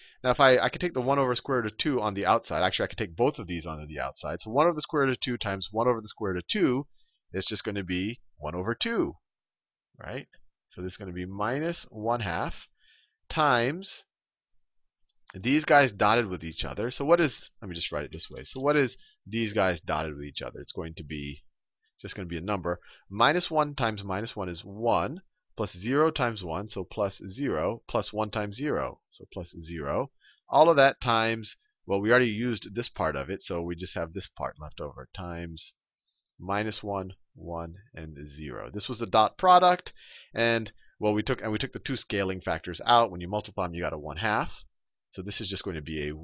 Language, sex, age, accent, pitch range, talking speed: English, male, 30-49, American, 90-130 Hz, 230 wpm